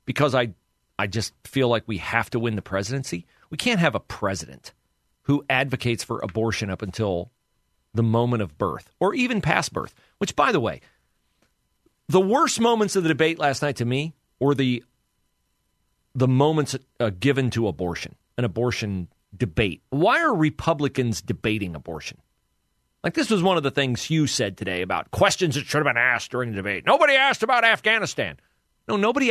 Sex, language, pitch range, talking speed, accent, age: male, English, 115-190 Hz, 180 wpm, American, 40-59